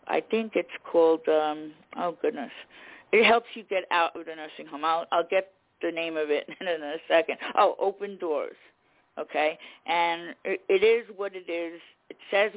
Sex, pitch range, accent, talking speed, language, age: female, 155-195 Hz, American, 185 wpm, English, 50-69